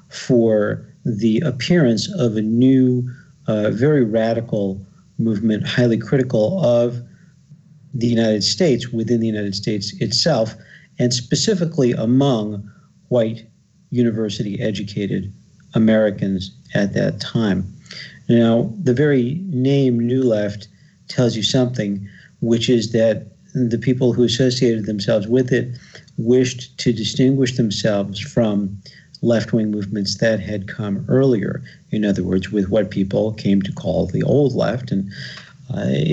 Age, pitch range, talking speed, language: 50-69, 105-130 Hz, 125 wpm, English